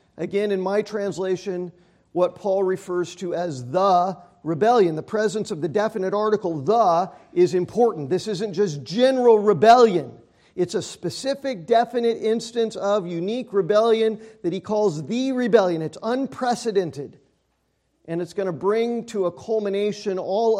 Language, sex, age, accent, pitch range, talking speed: English, male, 50-69, American, 180-220 Hz, 145 wpm